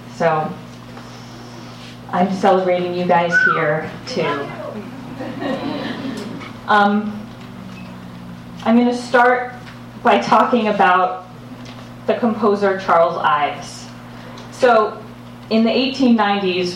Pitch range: 180-220 Hz